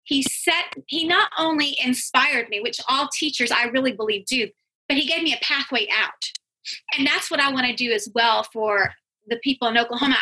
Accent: American